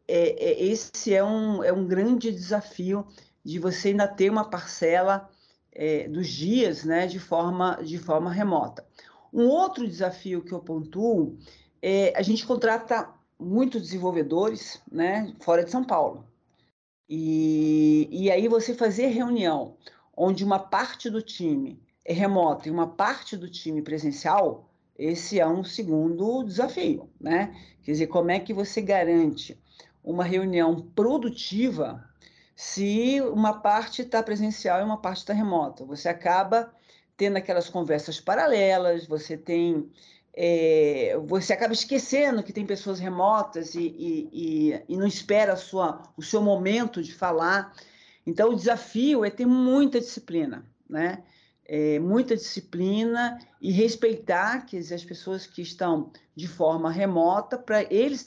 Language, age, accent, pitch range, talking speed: Portuguese, 50-69, Brazilian, 170-225 Hz, 140 wpm